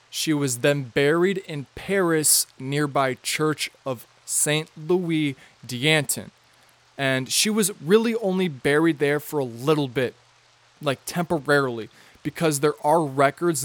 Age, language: 20-39, English